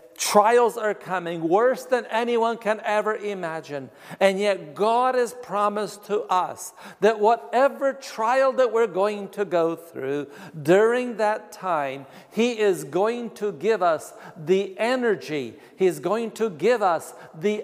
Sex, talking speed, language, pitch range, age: male, 145 wpm, English, 160-225 Hz, 60-79